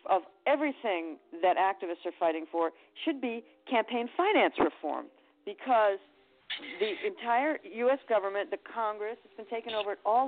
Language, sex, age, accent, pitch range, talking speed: English, female, 50-69, American, 185-300 Hz, 145 wpm